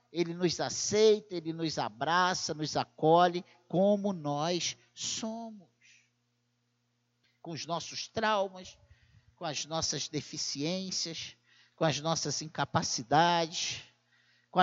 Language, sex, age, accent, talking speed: Portuguese, male, 50-69, Brazilian, 100 wpm